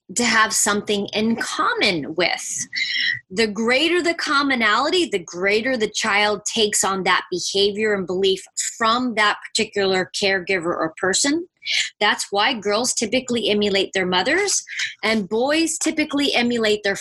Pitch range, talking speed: 185-230 Hz, 135 wpm